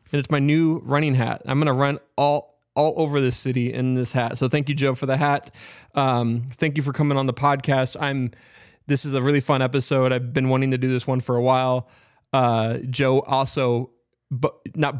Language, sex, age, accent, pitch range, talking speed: English, male, 20-39, American, 120-145 Hz, 215 wpm